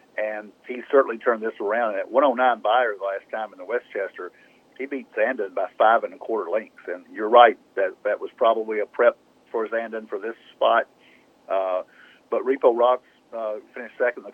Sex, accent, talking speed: male, American, 195 wpm